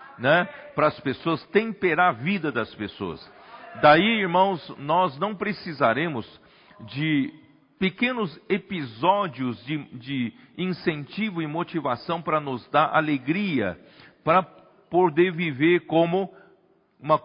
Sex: male